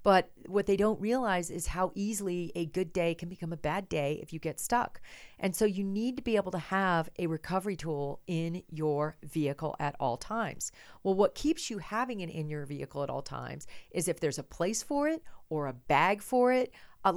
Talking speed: 220 wpm